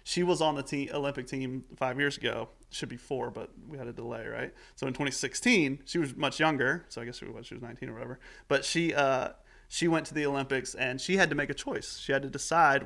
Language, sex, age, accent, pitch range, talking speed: English, male, 30-49, American, 130-150 Hz, 255 wpm